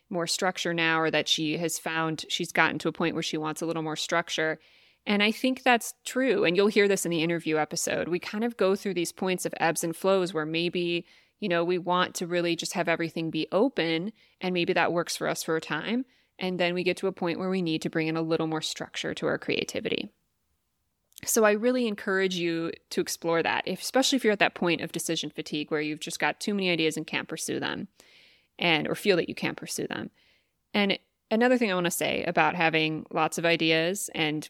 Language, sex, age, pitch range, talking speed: English, female, 20-39, 160-185 Hz, 235 wpm